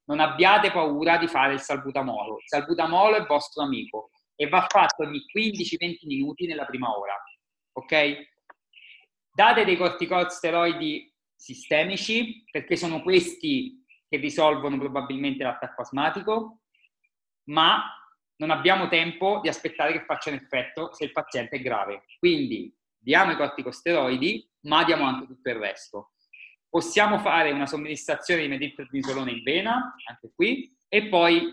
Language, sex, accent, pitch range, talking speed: Italian, male, native, 145-200 Hz, 135 wpm